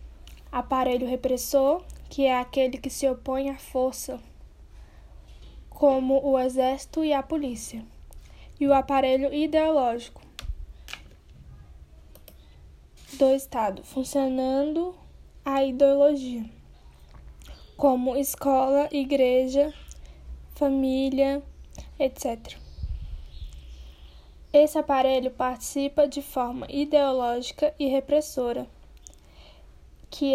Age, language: 10-29, Portuguese